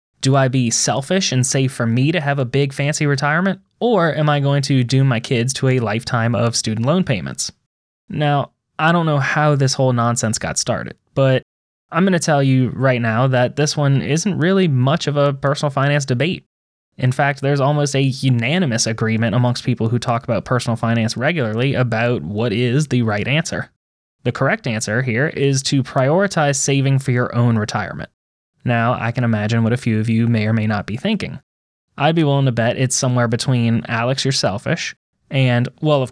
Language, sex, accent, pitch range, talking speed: English, male, American, 120-145 Hz, 200 wpm